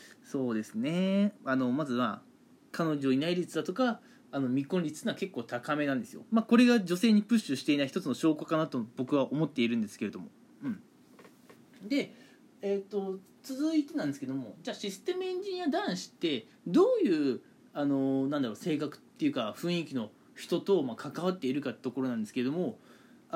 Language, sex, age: Japanese, male, 20-39